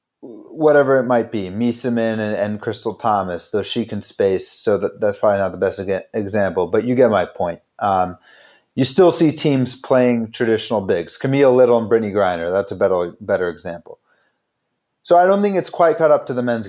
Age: 30-49